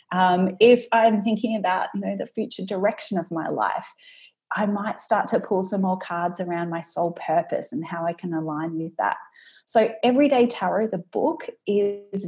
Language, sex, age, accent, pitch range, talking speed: English, female, 30-49, Australian, 180-225 Hz, 185 wpm